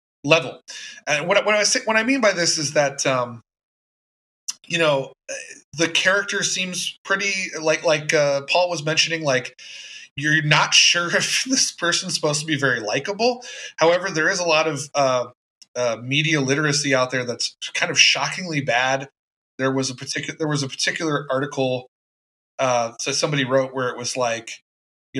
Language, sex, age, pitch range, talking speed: English, male, 20-39, 130-160 Hz, 175 wpm